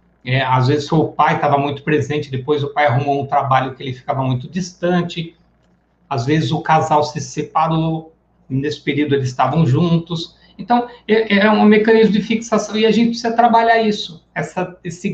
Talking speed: 170 wpm